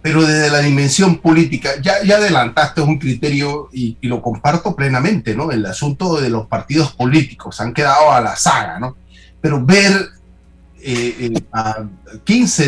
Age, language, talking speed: 40-59, Spanish, 160 wpm